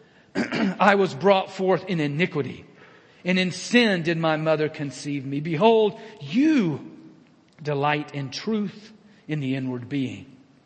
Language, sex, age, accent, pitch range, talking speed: English, male, 40-59, American, 145-210 Hz, 130 wpm